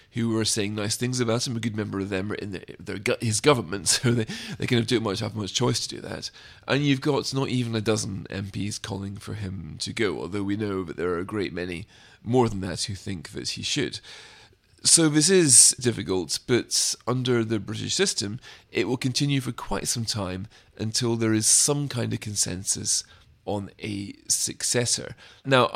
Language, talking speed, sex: English, 205 wpm, male